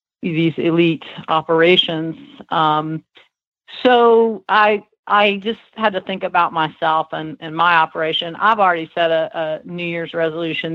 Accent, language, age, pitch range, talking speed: American, English, 50-69, 160-185 Hz, 140 wpm